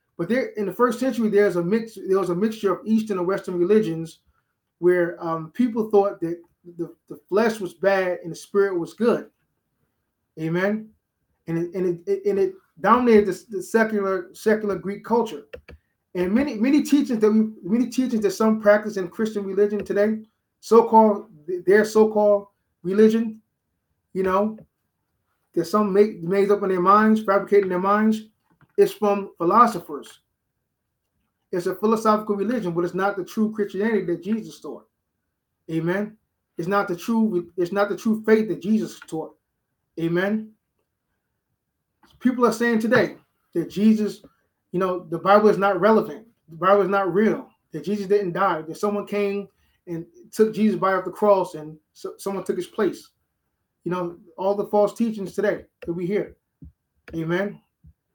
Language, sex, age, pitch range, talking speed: Dutch, male, 20-39, 180-220 Hz, 165 wpm